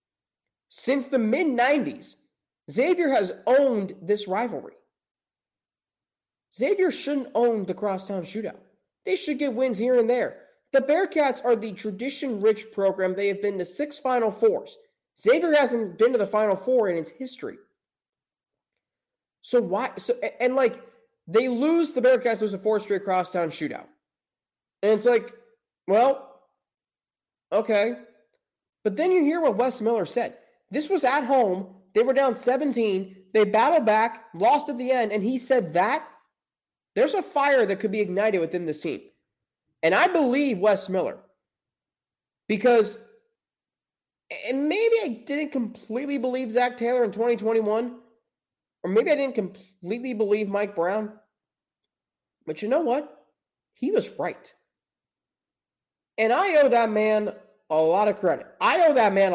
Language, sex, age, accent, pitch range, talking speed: English, male, 20-39, American, 210-280 Hz, 145 wpm